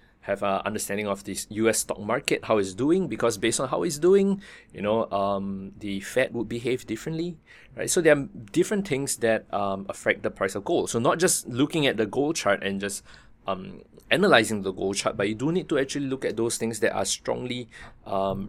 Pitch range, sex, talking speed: 100-135 Hz, male, 220 wpm